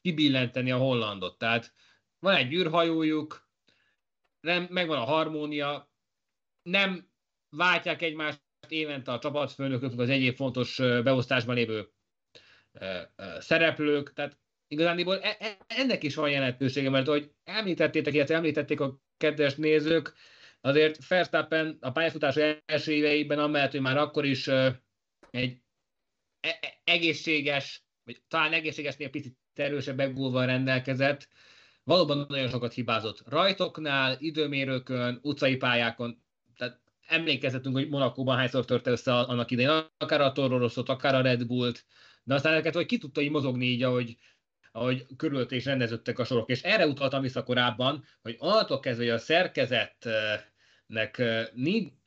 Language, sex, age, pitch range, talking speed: Hungarian, male, 30-49, 125-155 Hz, 130 wpm